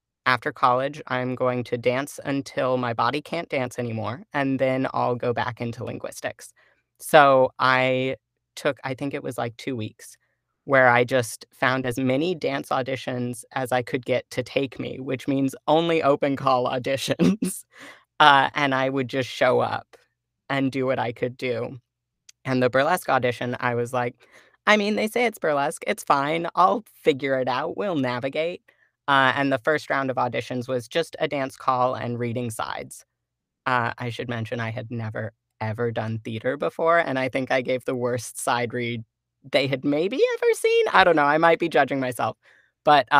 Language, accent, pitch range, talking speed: English, American, 120-135 Hz, 185 wpm